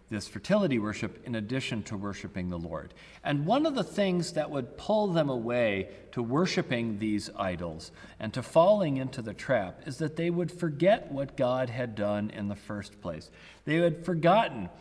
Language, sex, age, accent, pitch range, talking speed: English, male, 40-59, American, 105-150 Hz, 180 wpm